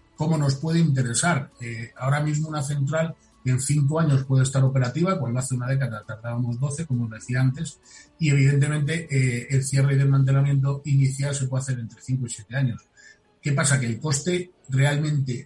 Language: Spanish